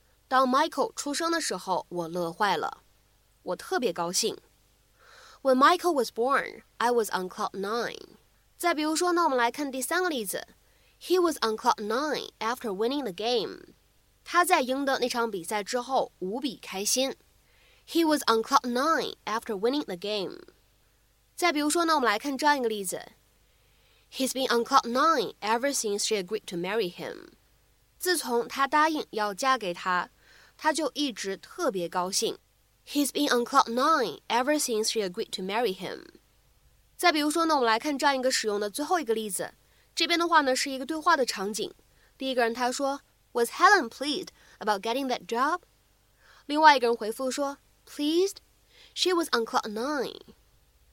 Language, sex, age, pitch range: Chinese, female, 20-39, 220-305 Hz